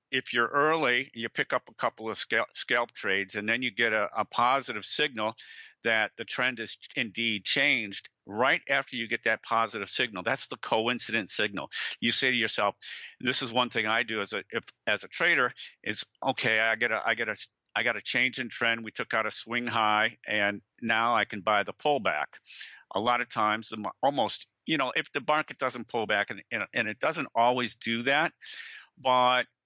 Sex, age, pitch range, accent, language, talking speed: male, 50-69, 110-125 Hz, American, English, 205 wpm